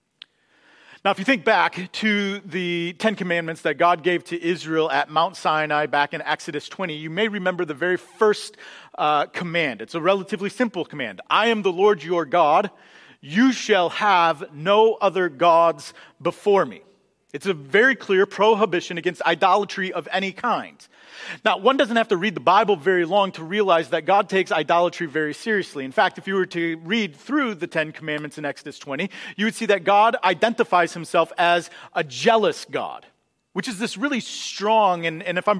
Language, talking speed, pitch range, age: English, 185 wpm, 170-215 Hz, 40-59